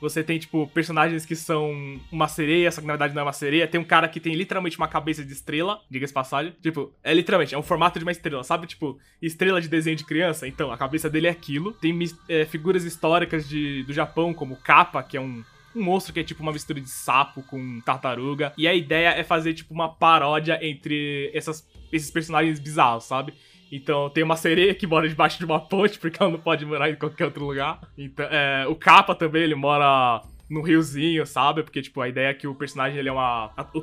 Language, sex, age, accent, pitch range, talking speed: Portuguese, male, 20-39, Brazilian, 140-170 Hz, 225 wpm